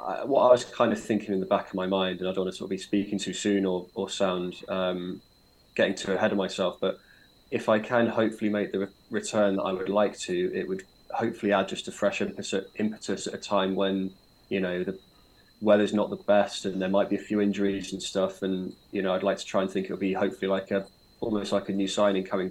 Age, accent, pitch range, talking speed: 20-39, British, 95-105 Hz, 255 wpm